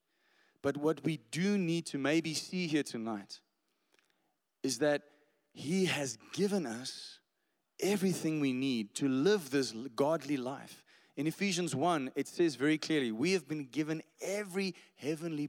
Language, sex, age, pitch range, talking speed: English, male, 30-49, 145-190 Hz, 145 wpm